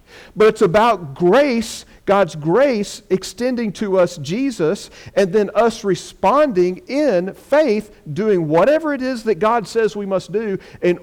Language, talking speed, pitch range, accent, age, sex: English, 145 wpm, 165-230 Hz, American, 40-59, male